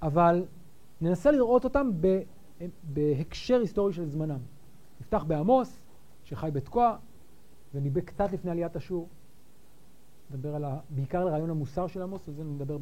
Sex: male